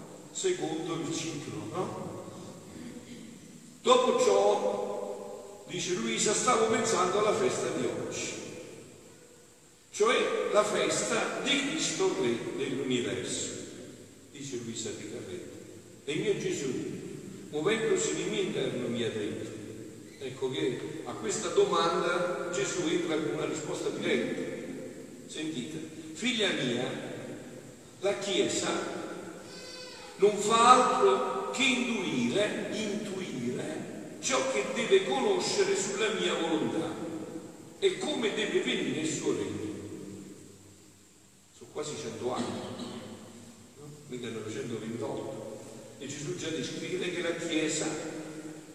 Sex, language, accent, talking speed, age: male, Italian, native, 105 wpm, 50-69